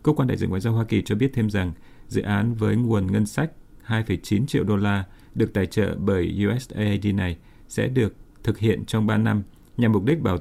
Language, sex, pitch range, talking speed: Vietnamese, male, 95-115 Hz, 225 wpm